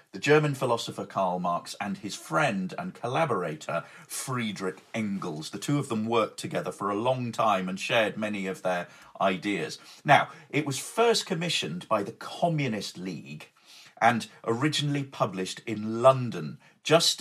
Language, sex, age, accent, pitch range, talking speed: English, male, 40-59, British, 100-145 Hz, 150 wpm